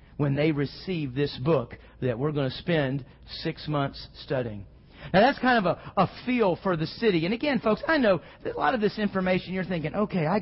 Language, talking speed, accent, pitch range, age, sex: English, 215 wpm, American, 165-265 Hz, 40-59, male